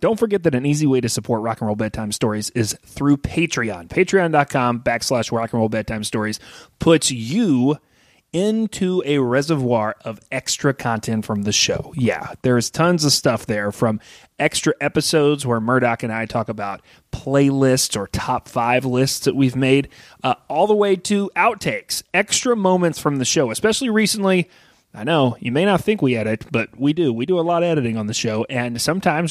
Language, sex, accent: English, male, American